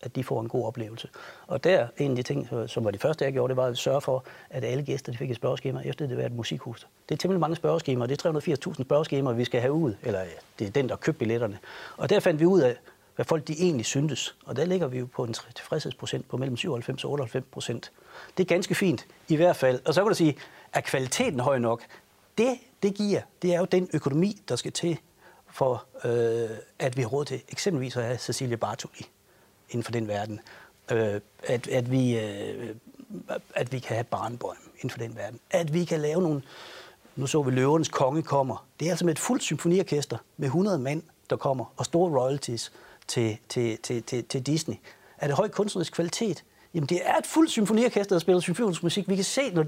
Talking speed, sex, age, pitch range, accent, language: 230 wpm, male, 60-79, 125-175 Hz, native, Danish